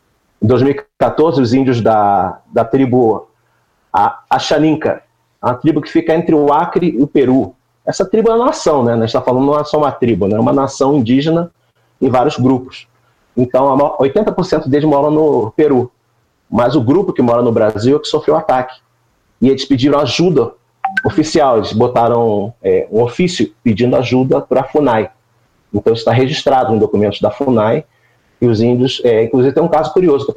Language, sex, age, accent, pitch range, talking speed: Portuguese, male, 40-59, Brazilian, 115-150 Hz, 180 wpm